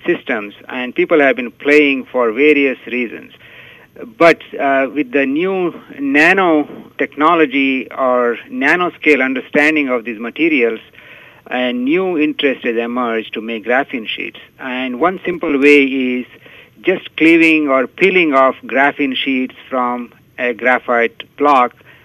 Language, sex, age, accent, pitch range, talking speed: English, male, 60-79, Indian, 125-160 Hz, 130 wpm